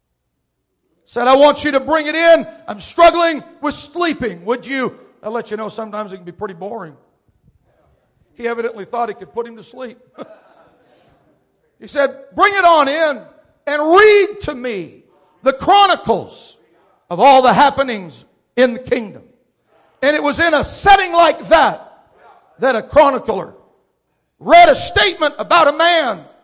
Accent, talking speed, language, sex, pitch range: American, 155 wpm, English, male, 245-345 Hz